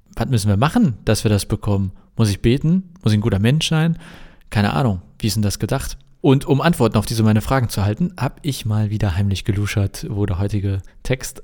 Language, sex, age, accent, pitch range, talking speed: German, male, 40-59, German, 105-130 Hz, 225 wpm